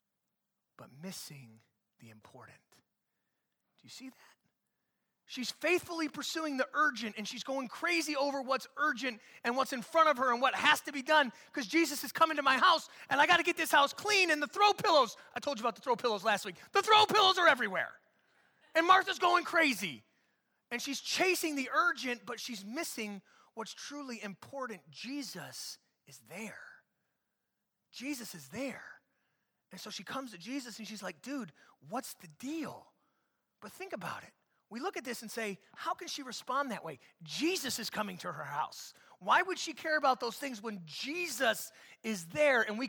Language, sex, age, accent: English, male, 30-49, American